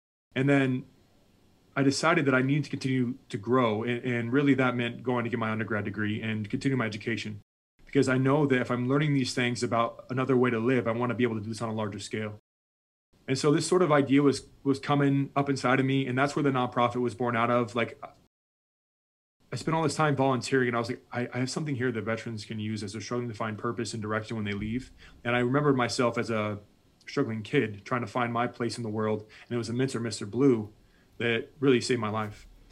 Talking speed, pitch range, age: 245 wpm, 110-135 Hz, 20-39